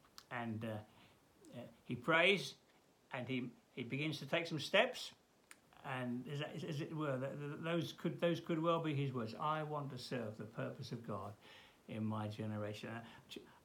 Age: 60-79